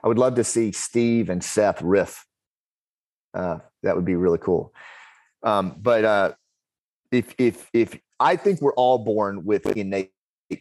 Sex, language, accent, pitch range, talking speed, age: male, English, American, 100-125 Hz, 160 wpm, 30-49